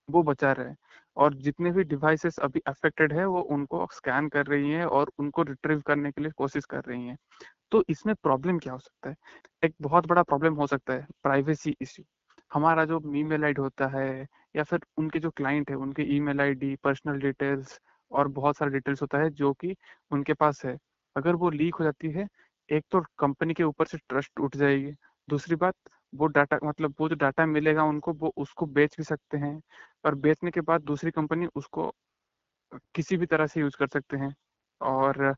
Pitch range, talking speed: 140-160 Hz, 170 wpm